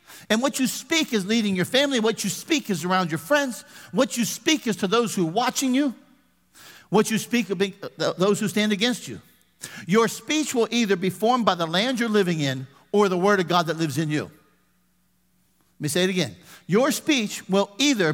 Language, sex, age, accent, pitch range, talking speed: English, male, 50-69, American, 170-230 Hz, 215 wpm